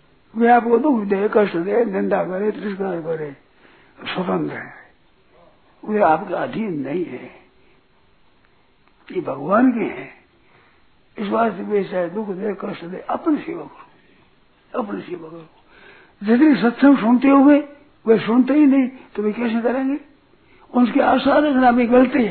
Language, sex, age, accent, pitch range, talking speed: Hindi, male, 60-79, native, 210-280 Hz, 135 wpm